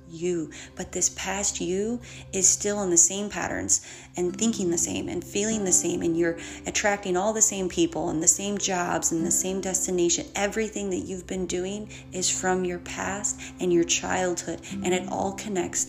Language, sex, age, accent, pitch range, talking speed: English, female, 30-49, American, 170-195 Hz, 190 wpm